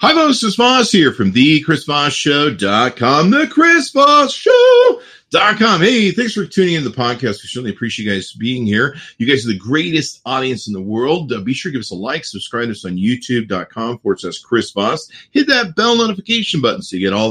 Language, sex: English, male